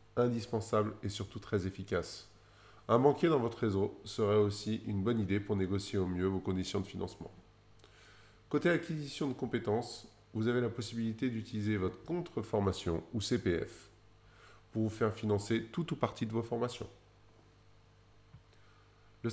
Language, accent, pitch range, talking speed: French, French, 105-125 Hz, 145 wpm